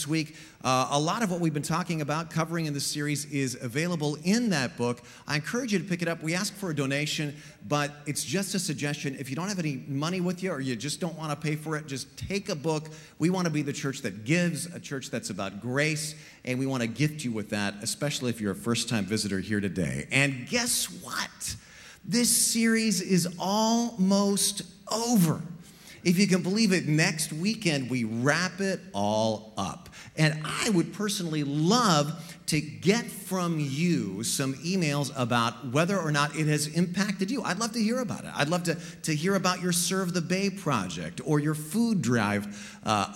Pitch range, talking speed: 135-185 Hz, 205 wpm